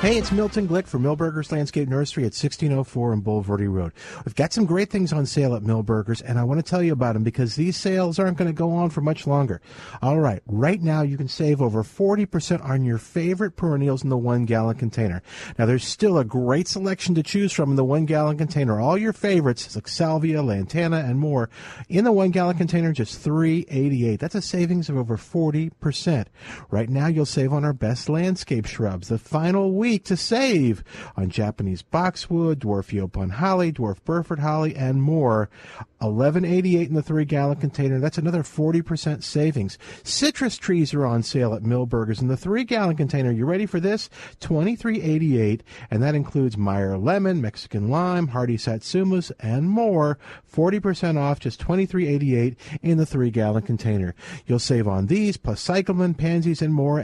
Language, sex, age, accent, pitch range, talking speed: English, male, 50-69, American, 120-175 Hz, 185 wpm